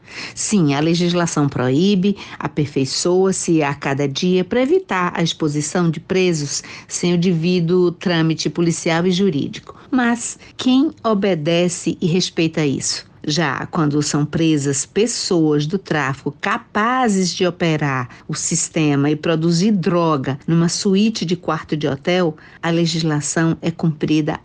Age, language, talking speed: 50-69, Portuguese, 130 wpm